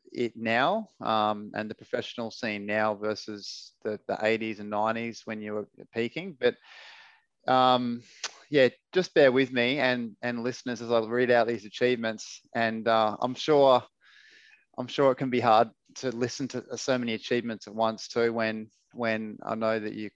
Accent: Australian